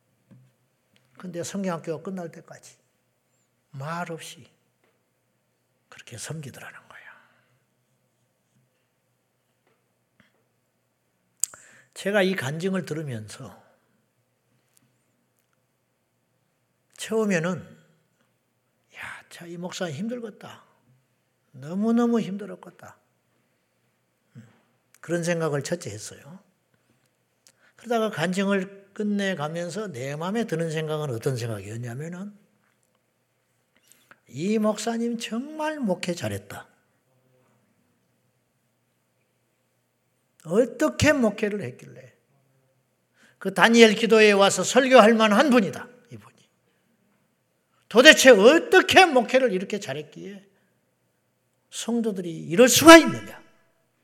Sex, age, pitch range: male, 60-79, 130-215 Hz